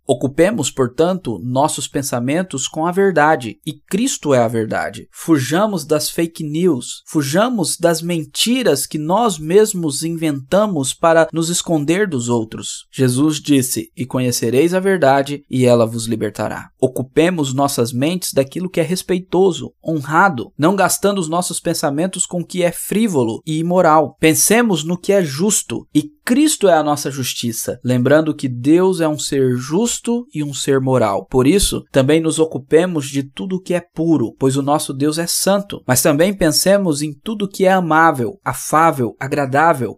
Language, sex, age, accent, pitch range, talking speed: Portuguese, male, 20-39, Brazilian, 135-180 Hz, 160 wpm